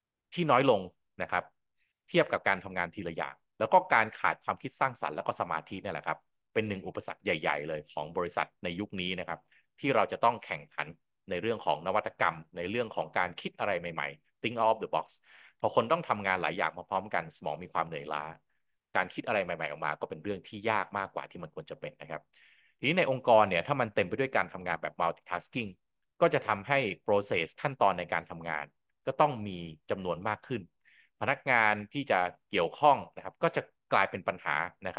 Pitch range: 85-115 Hz